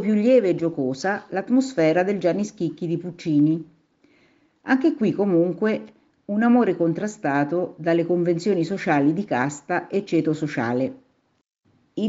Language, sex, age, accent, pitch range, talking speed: Italian, female, 50-69, native, 155-245 Hz, 125 wpm